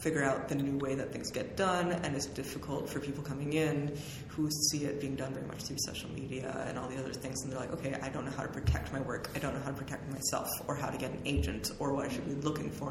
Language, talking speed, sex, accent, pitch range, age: English, 295 wpm, female, American, 135-165 Hz, 20-39